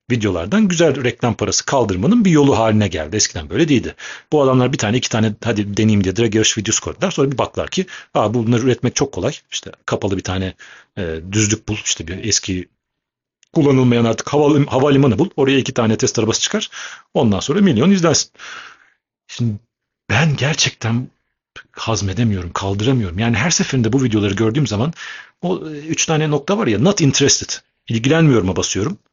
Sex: male